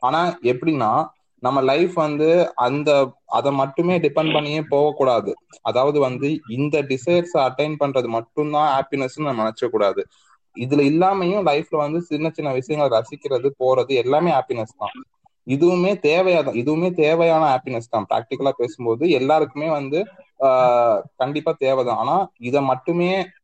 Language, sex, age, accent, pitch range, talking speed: Tamil, male, 20-39, native, 125-155 Hz, 135 wpm